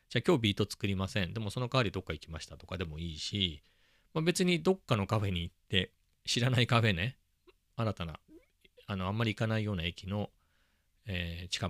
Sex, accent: male, native